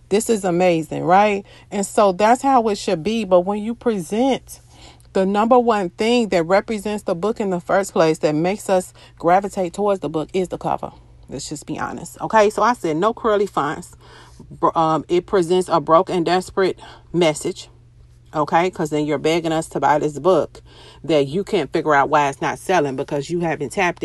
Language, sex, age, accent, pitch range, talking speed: English, female, 40-59, American, 165-215 Hz, 190 wpm